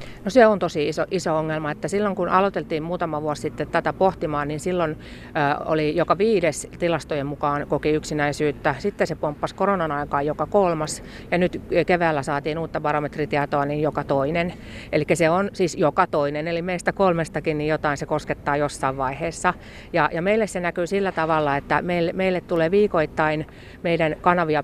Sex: female